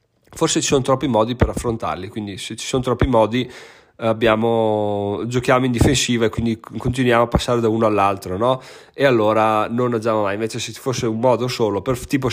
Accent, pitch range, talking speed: native, 110-140 Hz, 180 wpm